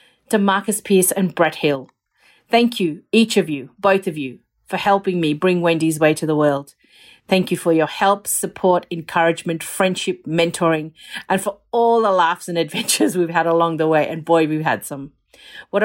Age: 40-59